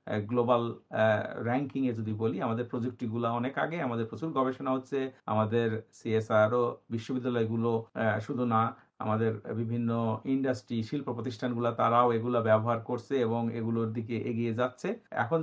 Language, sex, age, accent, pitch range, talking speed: Bengali, male, 50-69, native, 115-135 Hz, 125 wpm